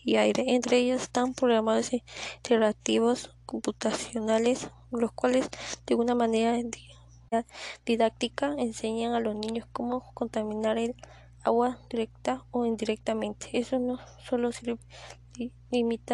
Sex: female